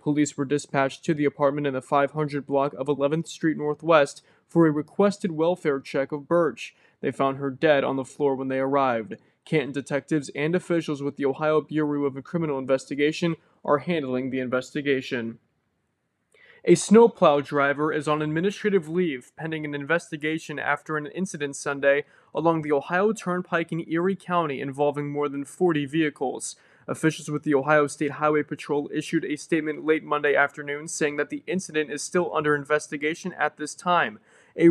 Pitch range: 140-160 Hz